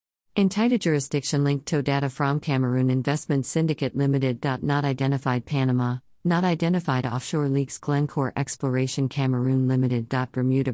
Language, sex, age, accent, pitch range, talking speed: English, female, 50-69, American, 125-150 Hz, 125 wpm